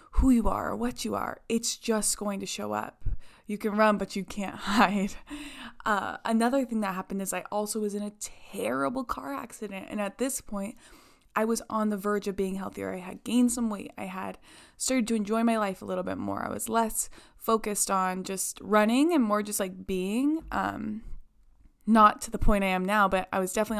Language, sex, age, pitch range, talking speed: English, female, 20-39, 195-230 Hz, 215 wpm